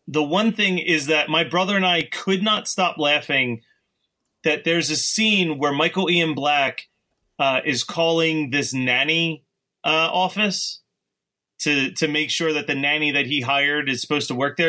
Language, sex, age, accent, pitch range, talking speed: English, male, 30-49, American, 145-190 Hz, 175 wpm